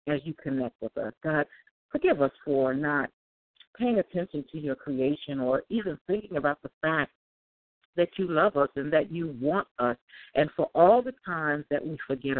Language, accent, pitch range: English, American, 130-175 Hz